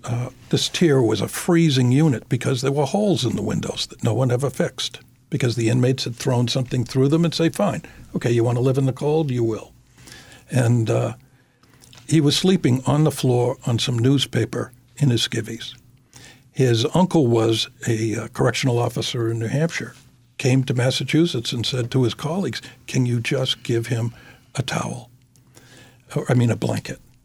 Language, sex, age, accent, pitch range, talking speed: English, male, 60-79, American, 120-135 Hz, 185 wpm